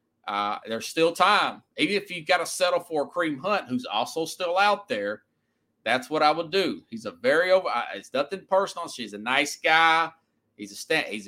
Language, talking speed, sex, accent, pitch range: English, 210 wpm, male, American, 125-180 Hz